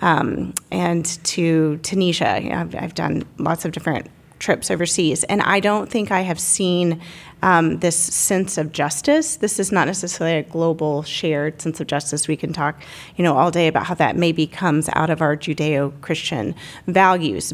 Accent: American